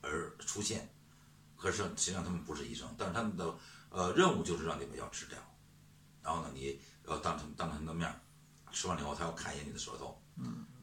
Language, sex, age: Chinese, male, 60-79